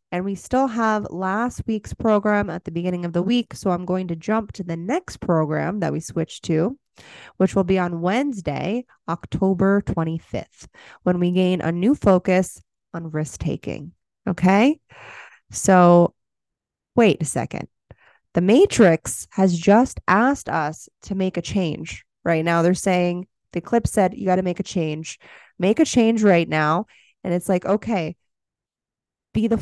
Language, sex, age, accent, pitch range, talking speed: English, female, 20-39, American, 175-230 Hz, 160 wpm